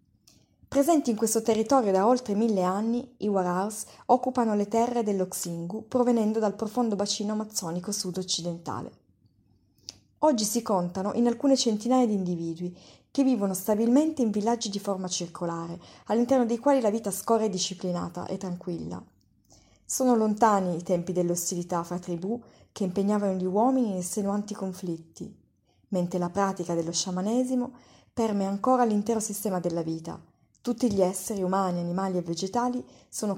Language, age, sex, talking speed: Italian, 20-39, female, 140 wpm